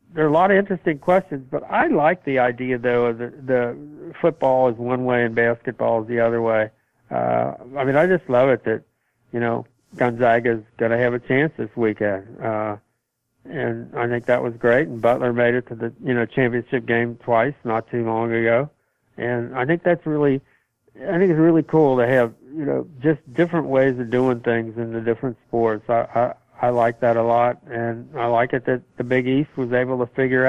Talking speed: 215 wpm